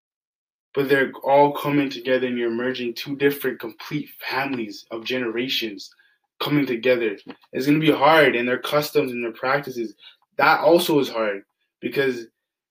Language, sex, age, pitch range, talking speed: English, male, 20-39, 120-150 Hz, 150 wpm